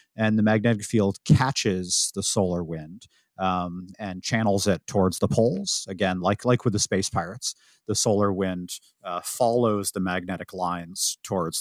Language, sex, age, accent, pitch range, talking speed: English, male, 30-49, American, 95-120 Hz, 160 wpm